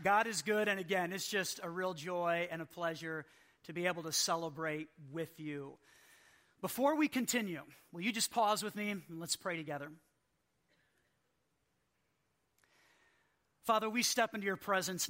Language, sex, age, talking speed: English, male, 40-59, 155 wpm